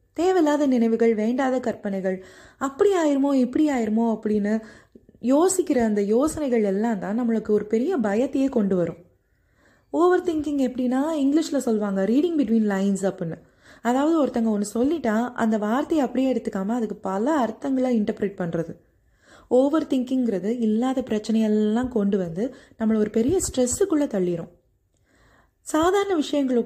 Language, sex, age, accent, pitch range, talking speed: Tamil, female, 20-39, native, 210-275 Hz, 125 wpm